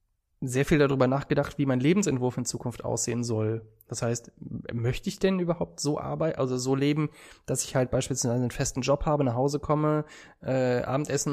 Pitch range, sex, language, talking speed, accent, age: 125-150 Hz, male, German, 185 wpm, German, 20-39